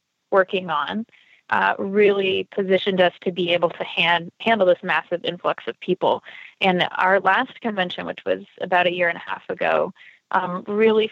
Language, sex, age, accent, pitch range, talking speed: English, female, 20-39, American, 180-215 Hz, 175 wpm